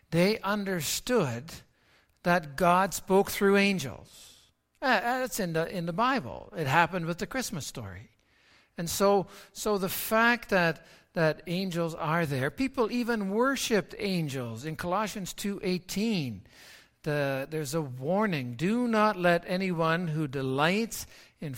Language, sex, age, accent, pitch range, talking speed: English, male, 60-79, American, 155-210 Hz, 130 wpm